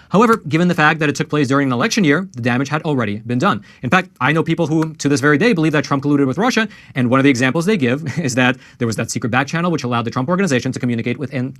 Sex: male